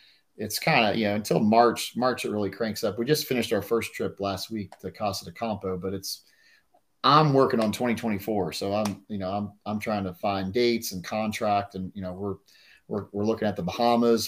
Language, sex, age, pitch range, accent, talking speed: English, male, 30-49, 95-110 Hz, American, 220 wpm